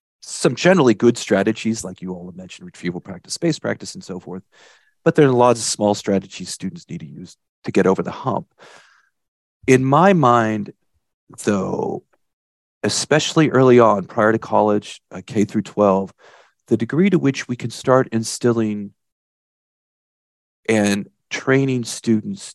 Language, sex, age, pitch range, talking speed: English, male, 40-59, 100-120 Hz, 150 wpm